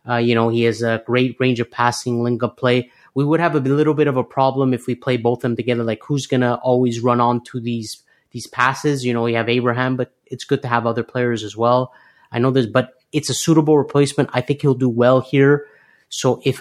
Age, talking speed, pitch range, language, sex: 30-49, 250 wpm, 115-130 Hz, English, male